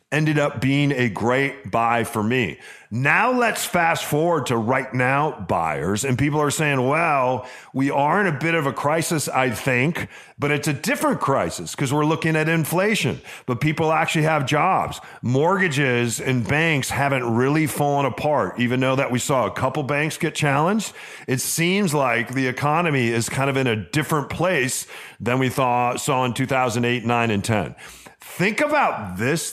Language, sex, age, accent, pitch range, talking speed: English, male, 40-59, American, 120-155 Hz, 180 wpm